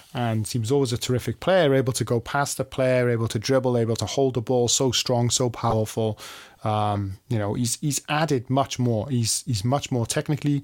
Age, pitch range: 20-39, 120-140 Hz